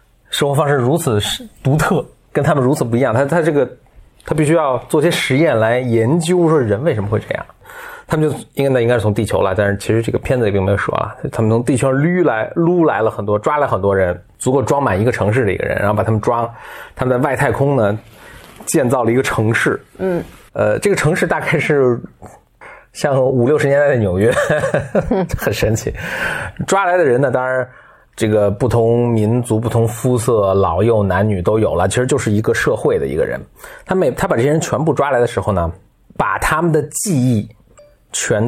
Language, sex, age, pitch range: Chinese, male, 20-39, 110-145 Hz